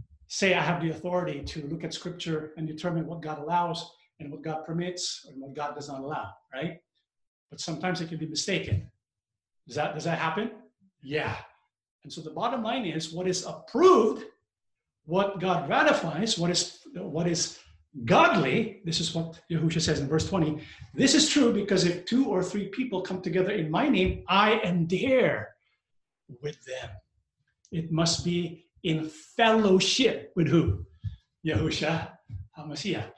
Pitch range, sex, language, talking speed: 155-195 Hz, male, English, 160 wpm